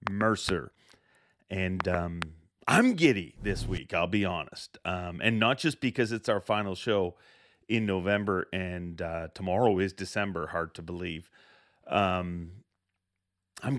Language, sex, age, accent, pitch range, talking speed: English, male, 40-59, American, 95-125 Hz, 135 wpm